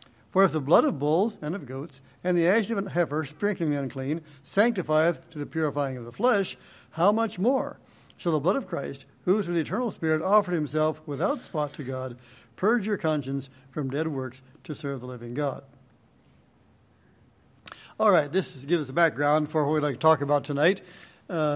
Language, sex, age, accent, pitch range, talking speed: English, male, 60-79, American, 140-175 Hz, 200 wpm